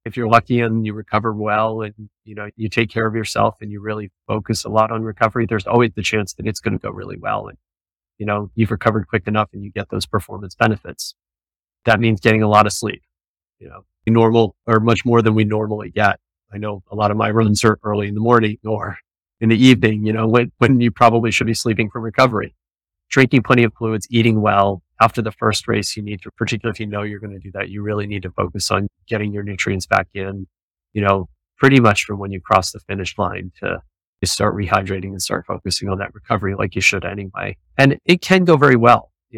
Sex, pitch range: male, 95-115 Hz